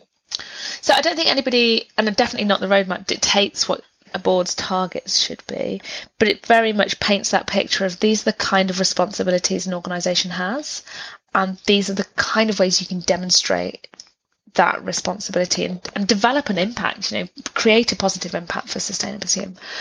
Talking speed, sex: 180 wpm, female